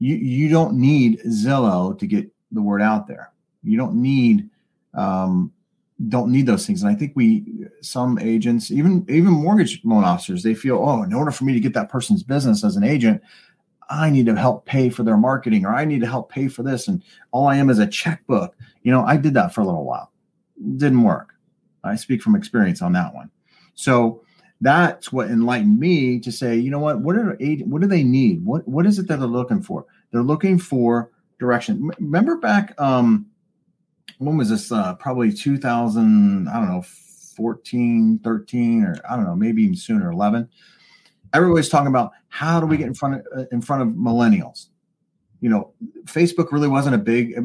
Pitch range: 125-205 Hz